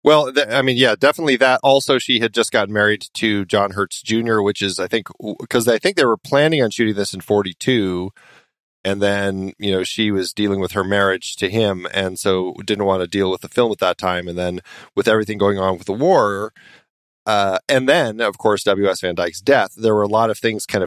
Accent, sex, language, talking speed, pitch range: American, male, English, 230 wpm, 95-115 Hz